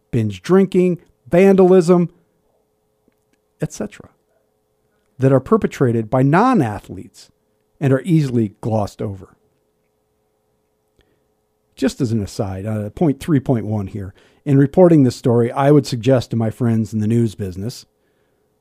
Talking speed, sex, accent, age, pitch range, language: 115 wpm, male, American, 50-69, 105-175 Hz, English